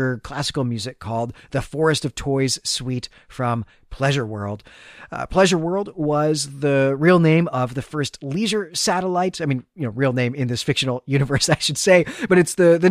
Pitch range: 125-165 Hz